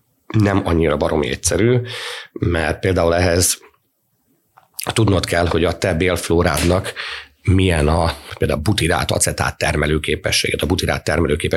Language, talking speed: Hungarian, 110 wpm